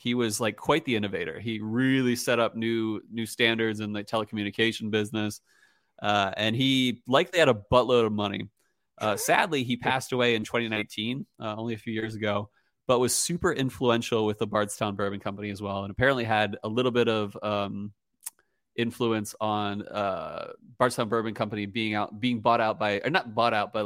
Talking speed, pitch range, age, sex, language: 190 wpm, 105-125 Hz, 30-49, male, English